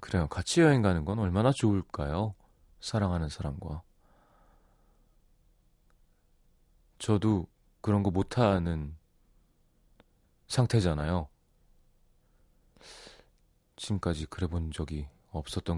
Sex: male